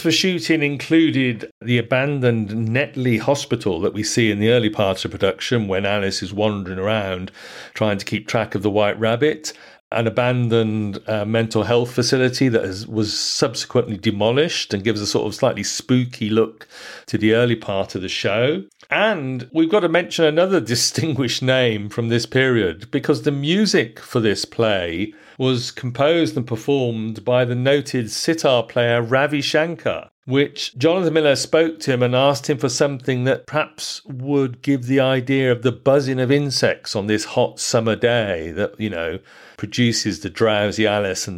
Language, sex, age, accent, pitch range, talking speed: English, male, 40-59, British, 110-140 Hz, 170 wpm